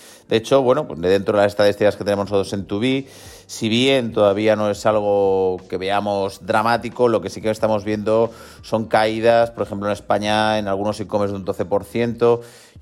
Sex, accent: male, Spanish